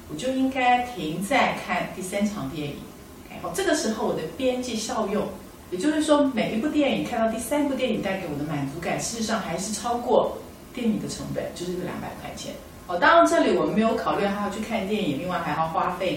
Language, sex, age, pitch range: Chinese, female, 40-59, 175-250 Hz